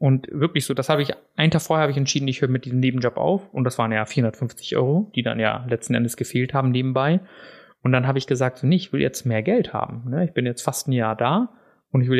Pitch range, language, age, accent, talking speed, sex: 120-150 Hz, German, 30-49, German, 265 wpm, male